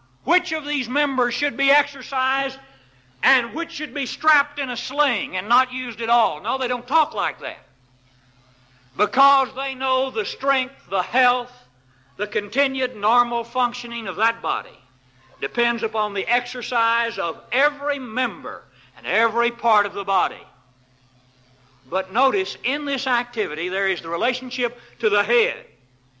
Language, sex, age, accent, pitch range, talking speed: English, male, 60-79, American, 170-265 Hz, 150 wpm